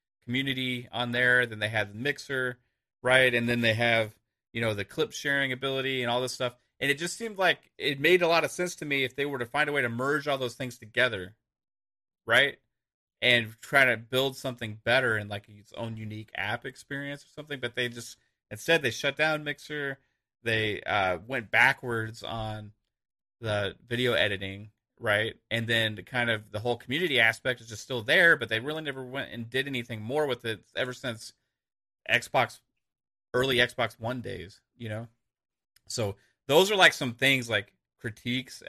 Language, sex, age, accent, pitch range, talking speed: English, male, 30-49, American, 110-135 Hz, 190 wpm